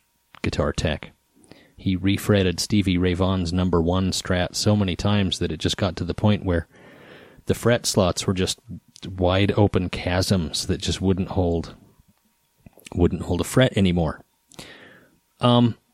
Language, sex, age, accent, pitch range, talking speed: English, male, 30-49, American, 90-115 Hz, 145 wpm